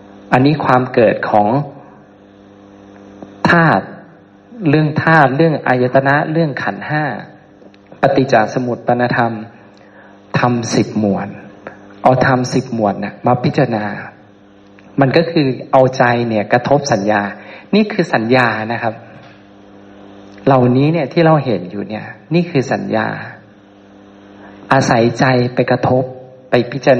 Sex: male